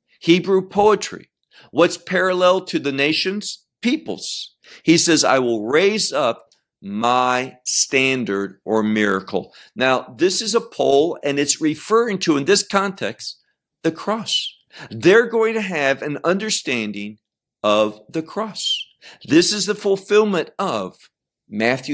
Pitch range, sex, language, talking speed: 135-205 Hz, male, English, 130 wpm